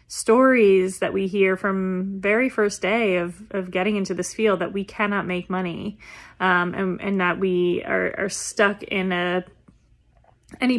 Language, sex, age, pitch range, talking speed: English, female, 20-39, 195-220 Hz, 165 wpm